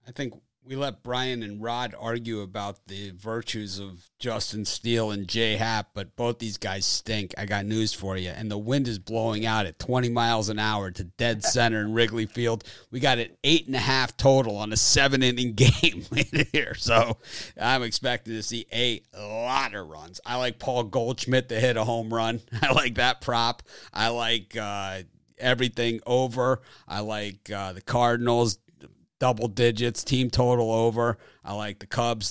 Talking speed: 180 wpm